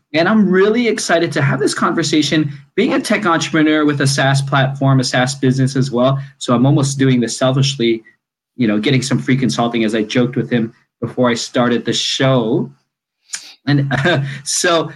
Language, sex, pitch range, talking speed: English, male, 125-150 Hz, 185 wpm